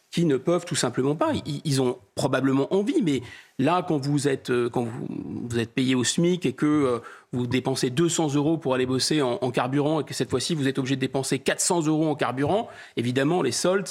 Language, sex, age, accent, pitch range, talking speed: French, male, 30-49, French, 140-180 Hz, 215 wpm